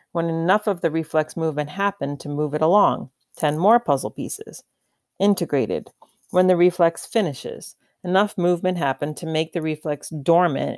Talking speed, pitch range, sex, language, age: 155 wpm, 150-190 Hz, female, English, 40-59